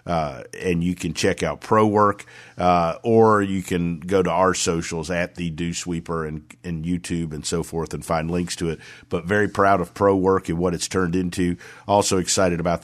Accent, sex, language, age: American, male, English, 50-69